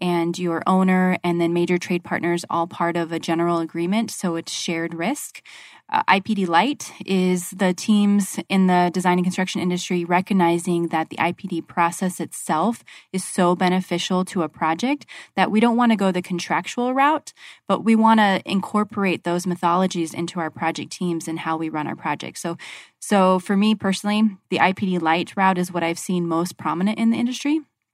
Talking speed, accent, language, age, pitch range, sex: 185 wpm, American, English, 20-39, 170-195 Hz, female